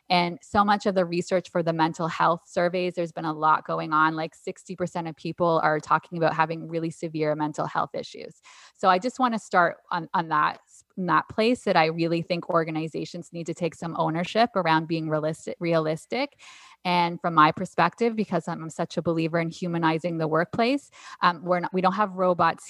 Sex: female